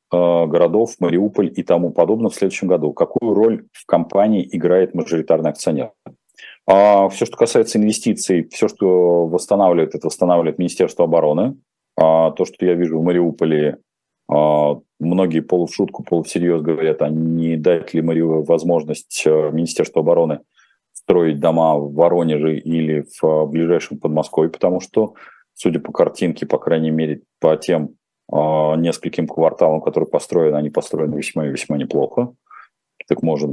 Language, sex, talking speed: Russian, male, 135 wpm